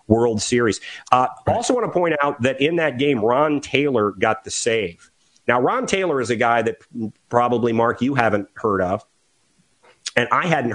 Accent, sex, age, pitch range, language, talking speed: American, male, 40-59, 105-130 Hz, English, 185 wpm